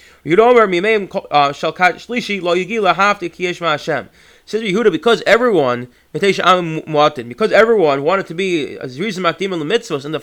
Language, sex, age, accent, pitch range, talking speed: English, male, 30-49, American, 155-200 Hz, 70 wpm